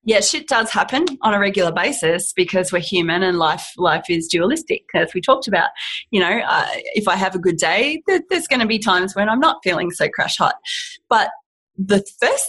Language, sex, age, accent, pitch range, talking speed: English, female, 30-49, Australian, 195-265 Hz, 210 wpm